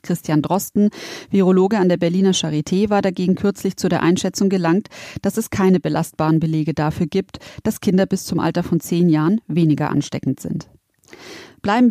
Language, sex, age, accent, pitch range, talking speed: German, female, 30-49, German, 165-210 Hz, 165 wpm